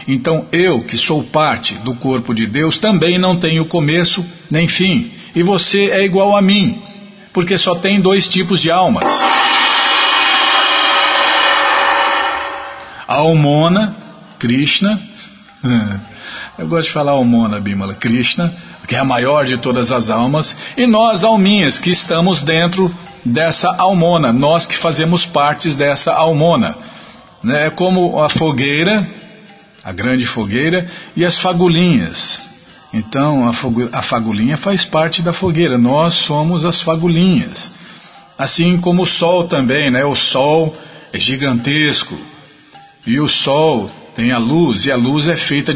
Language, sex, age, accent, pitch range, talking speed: Portuguese, male, 50-69, Brazilian, 135-180 Hz, 135 wpm